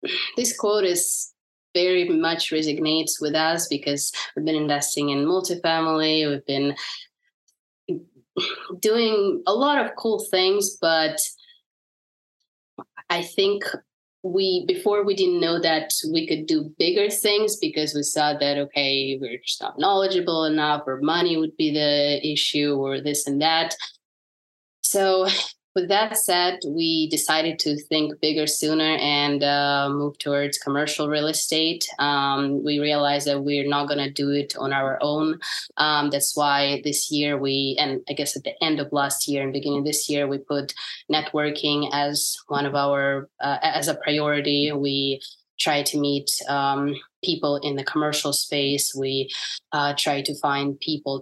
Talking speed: 155 wpm